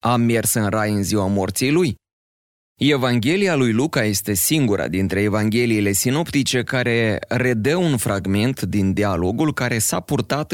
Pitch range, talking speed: 100-130 Hz, 140 wpm